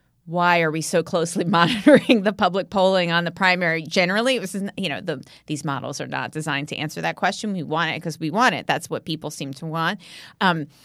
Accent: American